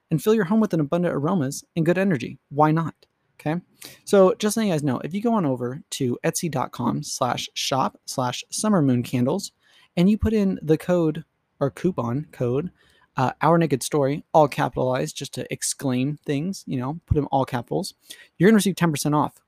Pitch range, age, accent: 140-180 Hz, 20-39, American